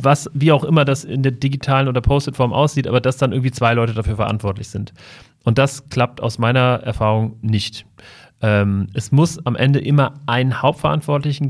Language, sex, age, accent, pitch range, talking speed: German, male, 30-49, German, 115-145 Hz, 190 wpm